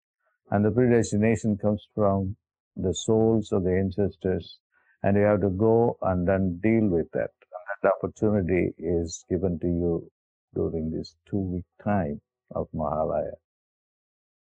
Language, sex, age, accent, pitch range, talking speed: English, male, 50-69, Indian, 90-115 Hz, 140 wpm